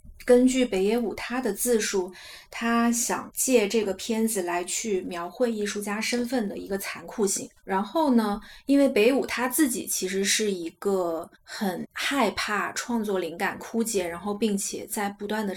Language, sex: Chinese, female